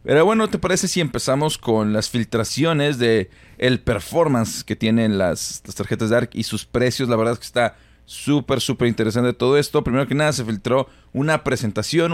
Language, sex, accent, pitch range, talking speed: Spanish, male, Mexican, 110-140 Hz, 190 wpm